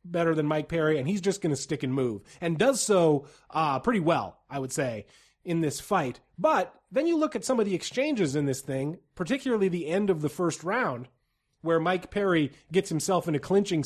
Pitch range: 140-180 Hz